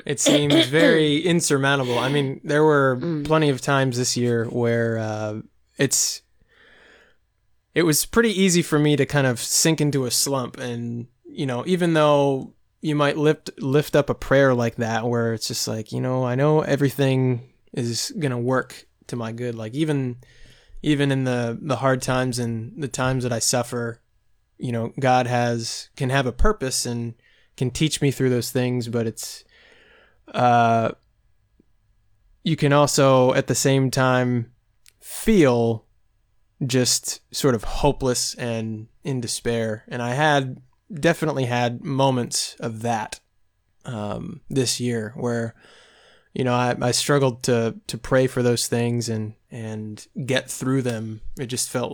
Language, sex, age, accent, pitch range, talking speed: English, male, 20-39, American, 115-140 Hz, 160 wpm